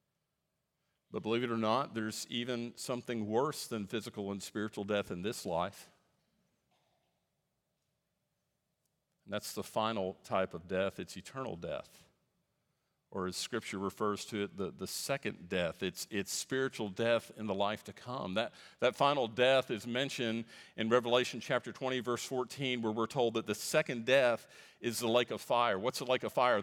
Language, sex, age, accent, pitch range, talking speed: English, male, 50-69, American, 115-145 Hz, 170 wpm